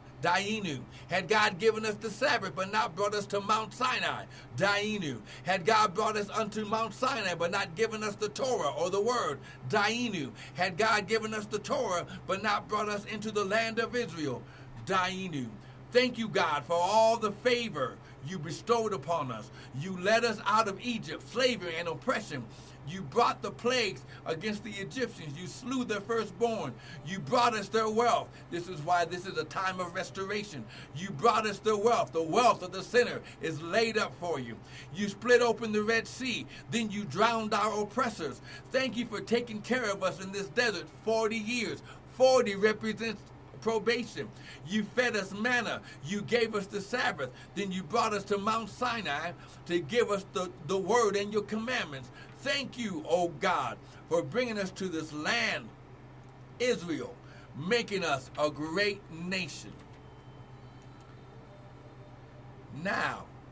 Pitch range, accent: 155-225 Hz, American